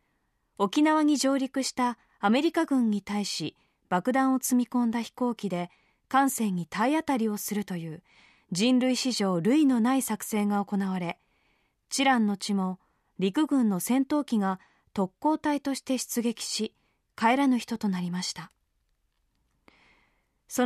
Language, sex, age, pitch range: Japanese, female, 20-39, 200-270 Hz